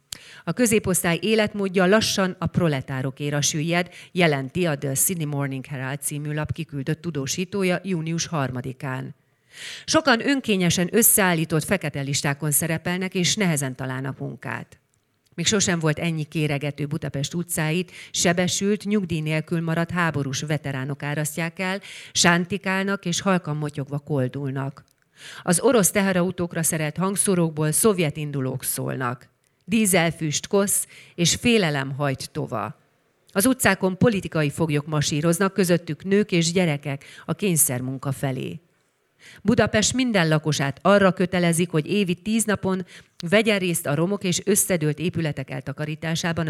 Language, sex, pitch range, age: Hungarian, female, 145-185 Hz, 40-59